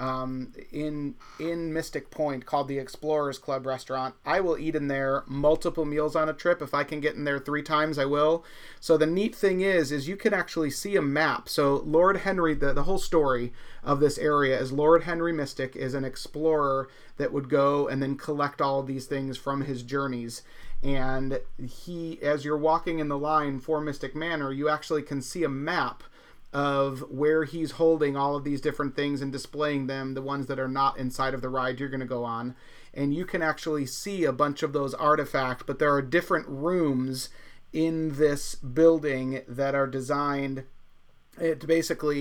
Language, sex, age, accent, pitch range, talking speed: English, male, 30-49, American, 135-155 Hz, 195 wpm